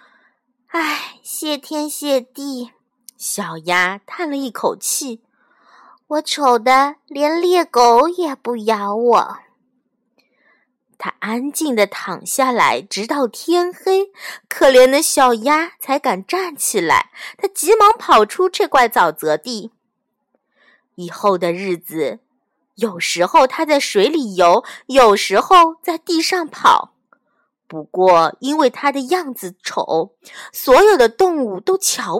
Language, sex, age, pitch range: Chinese, female, 20-39, 235-335 Hz